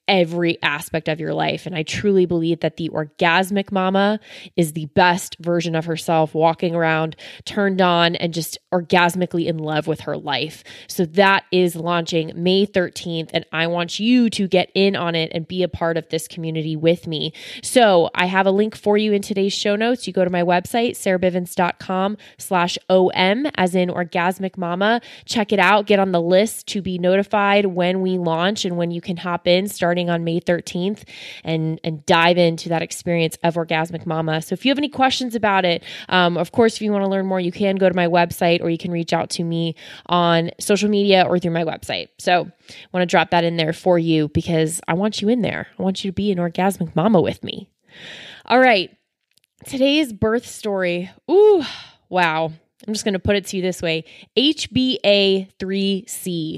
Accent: American